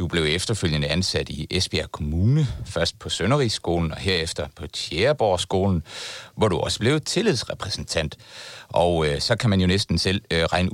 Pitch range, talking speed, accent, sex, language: 80-110 Hz, 150 wpm, native, male, Danish